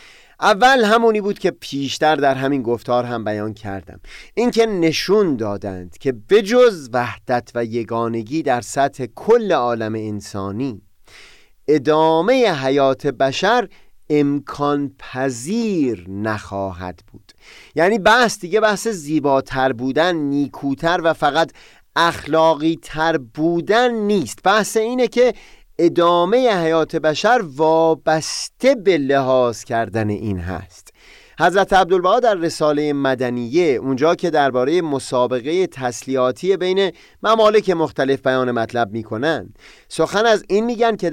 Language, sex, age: Persian, male, 30-49